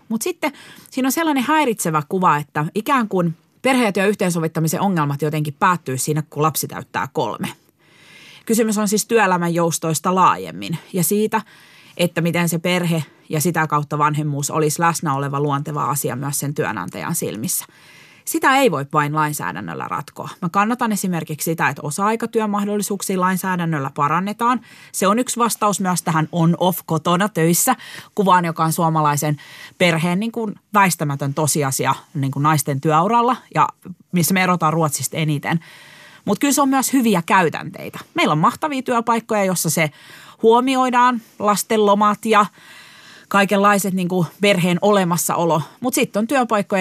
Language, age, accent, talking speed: Finnish, 30-49, native, 145 wpm